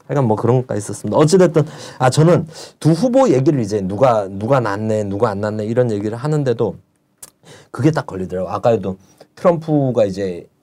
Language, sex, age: Korean, male, 40-59